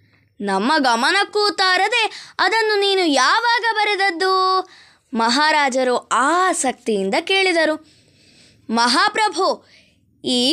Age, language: 20-39, Kannada